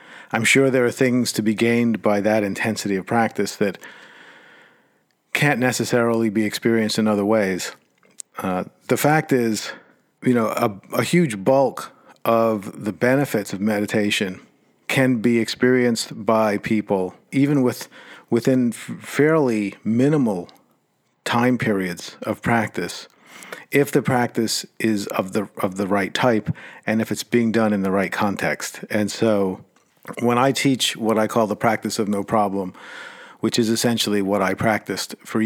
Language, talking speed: English, 150 wpm